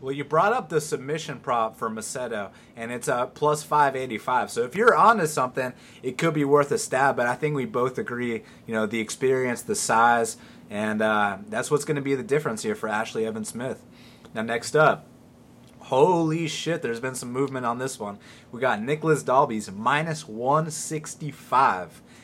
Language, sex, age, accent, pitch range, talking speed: English, male, 30-49, American, 120-150 Hz, 190 wpm